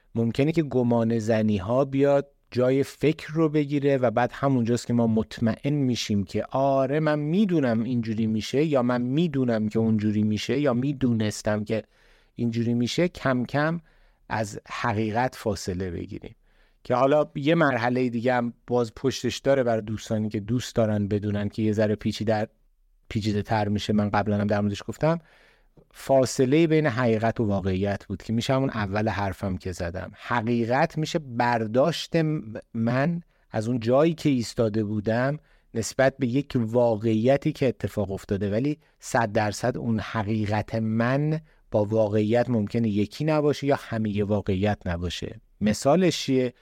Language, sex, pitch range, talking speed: Persian, male, 110-135 Hz, 145 wpm